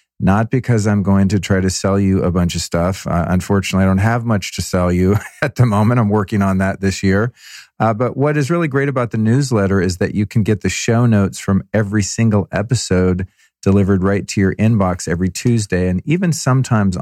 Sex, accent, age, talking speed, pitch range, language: male, American, 40-59, 220 wpm, 95-115 Hz, English